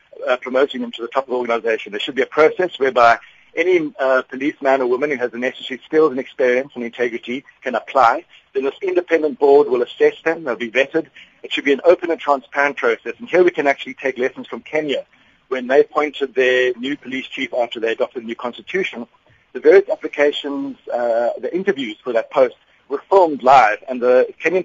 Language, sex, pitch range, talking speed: English, male, 120-155 Hz, 210 wpm